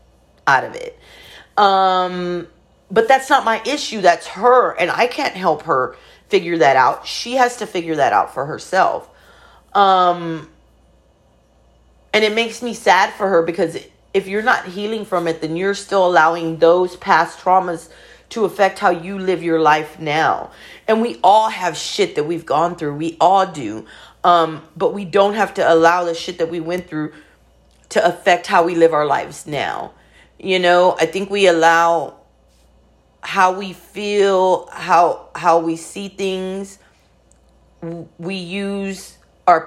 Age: 40-59